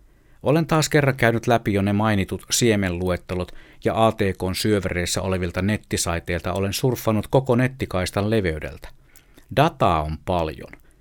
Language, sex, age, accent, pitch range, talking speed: Finnish, male, 50-69, native, 95-125 Hz, 120 wpm